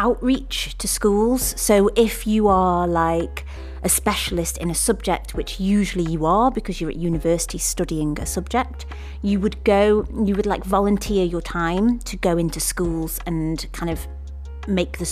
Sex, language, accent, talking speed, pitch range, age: female, English, British, 165 wpm, 160-200 Hz, 30-49